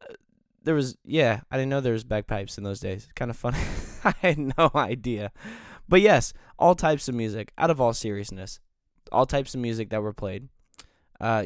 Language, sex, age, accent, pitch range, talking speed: English, male, 10-29, American, 105-130 Hz, 195 wpm